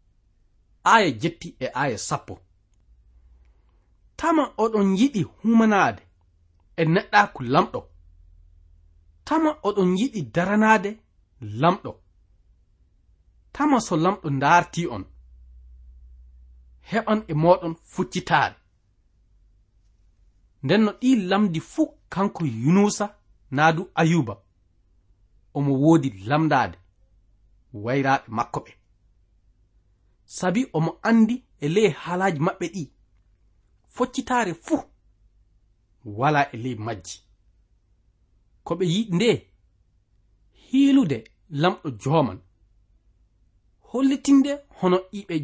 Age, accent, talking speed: 30-49, South African, 75 wpm